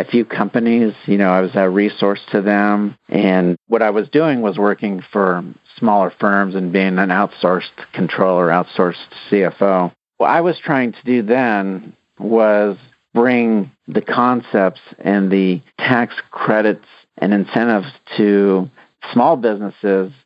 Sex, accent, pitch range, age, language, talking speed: male, American, 90-110 Hz, 50-69, English, 140 wpm